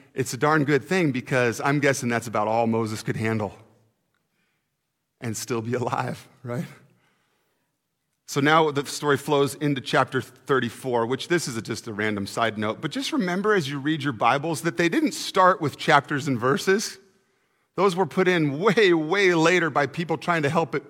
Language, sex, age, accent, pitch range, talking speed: English, male, 40-59, American, 135-175 Hz, 180 wpm